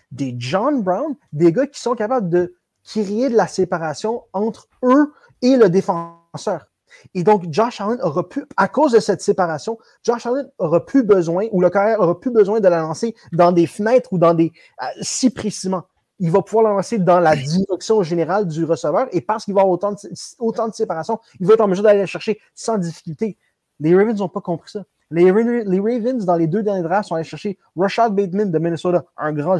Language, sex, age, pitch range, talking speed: French, male, 30-49, 180-235 Hz, 215 wpm